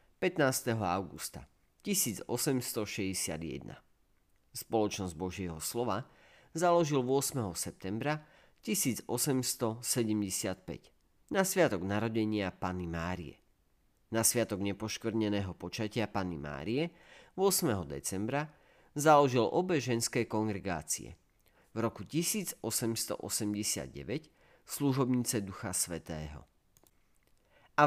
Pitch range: 95-130 Hz